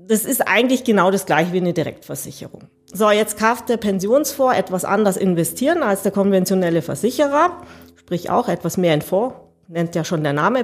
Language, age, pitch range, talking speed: German, 40-59, 180-240 Hz, 180 wpm